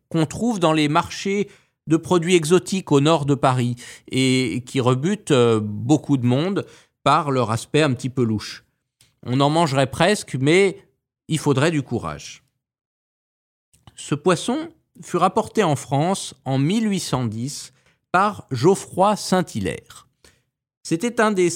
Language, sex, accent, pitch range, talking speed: French, male, French, 135-195 Hz, 135 wpm